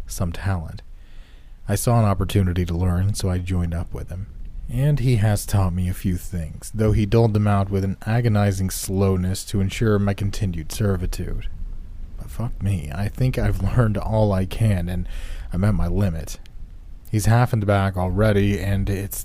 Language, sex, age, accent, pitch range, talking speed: English, male, 30-49, American, 90-105 Hz, 185 wpm